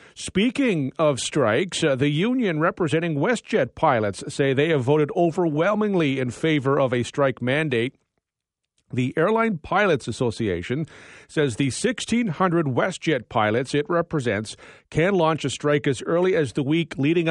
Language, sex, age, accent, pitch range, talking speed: English, male, 40-59, American, 130-160 Hz, 140 wpm